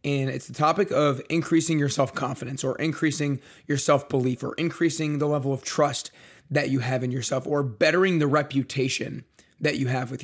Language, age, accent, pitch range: English, 30-49, American, 135-155 Hz